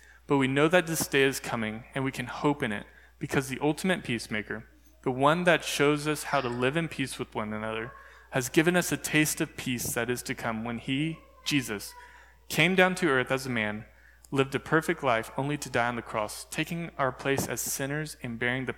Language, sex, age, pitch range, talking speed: English, male, 20-39, 110-150 Hz, 225 wpm